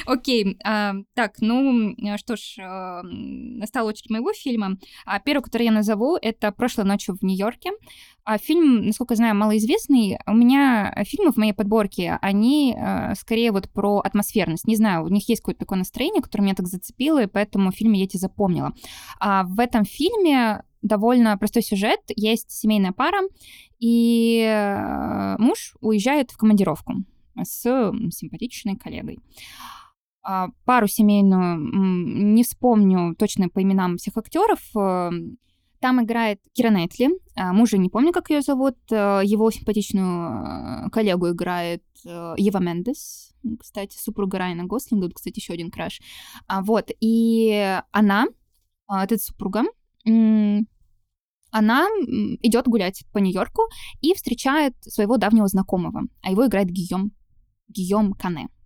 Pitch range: 195-240 Hz